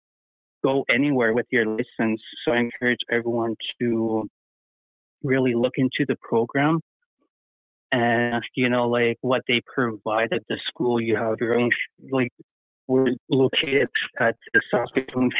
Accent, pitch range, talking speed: American, 115-130 Hz, 140 wpm